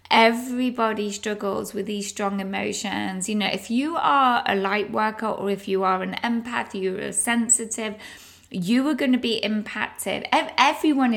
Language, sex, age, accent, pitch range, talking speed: English, female, 20-39, British, 195-240 Hz, 160 wpm